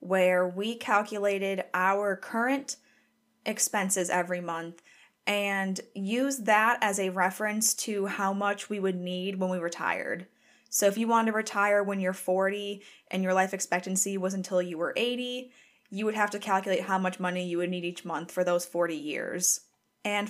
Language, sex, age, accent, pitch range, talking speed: English, female, 20-39, American, 180-210 Hz, 175 wpm